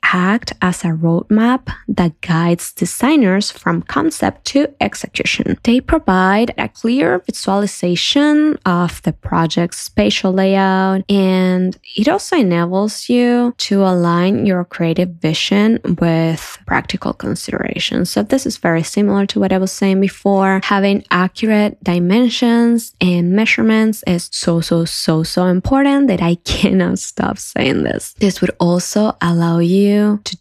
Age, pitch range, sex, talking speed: 10-29, 175-230 Hz, female, 135 wpm